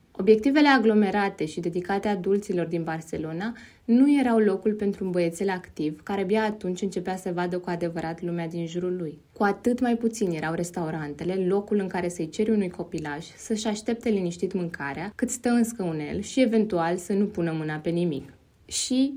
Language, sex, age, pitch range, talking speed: Romanian, female, 20-39, 170-220 Hz, 175 wpm